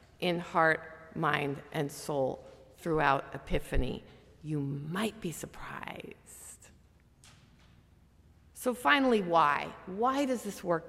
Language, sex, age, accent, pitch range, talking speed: English, female, 50-69, American, 140-220 Hz, 100 wpm